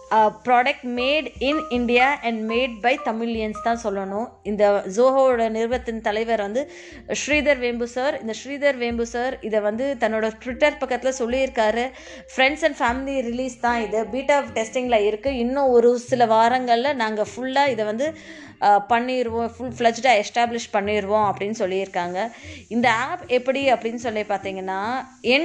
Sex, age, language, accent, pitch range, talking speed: female, 20-39, Tamil, native, 215-265 Hz, 140 wpm